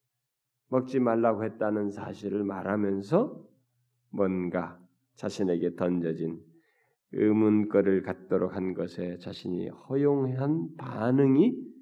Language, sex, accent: Korean, male, native